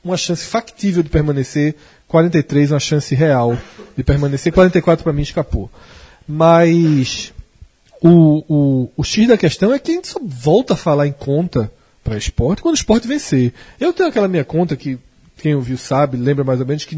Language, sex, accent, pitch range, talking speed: Portuguese, male, Brazilian, 135-185 Hz, 185 wpm